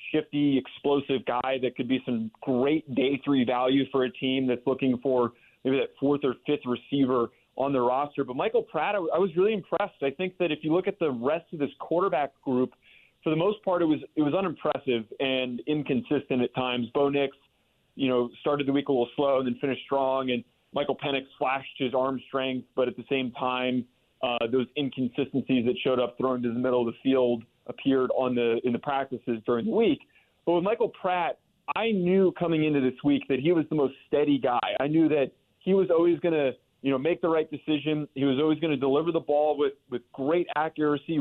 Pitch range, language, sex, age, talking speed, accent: 130-155 Hz, English, male, 30-49, 220 wpm, American